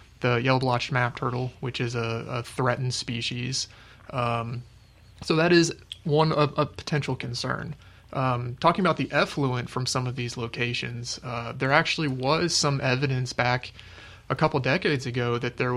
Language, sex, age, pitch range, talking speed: English, male, 30-49, 120-135 Hz, 160 wpm